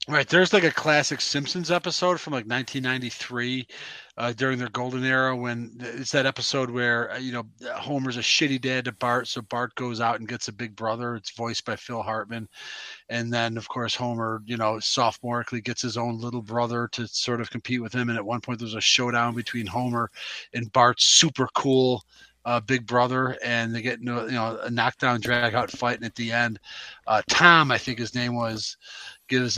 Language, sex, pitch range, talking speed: English, male, 120-140 Hz, 200 wpm